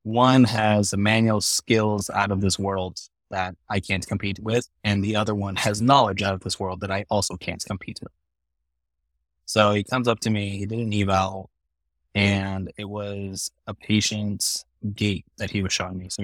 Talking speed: 190 wpm